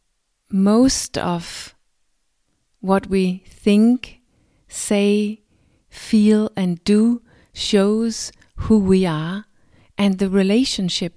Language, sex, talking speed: English, female, 85 wpm